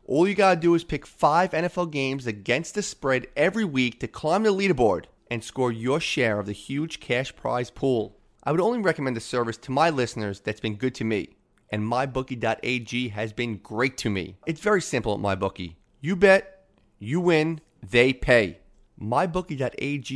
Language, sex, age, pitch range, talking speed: English, male, 30-49, 115-155 Hz, 180 wpm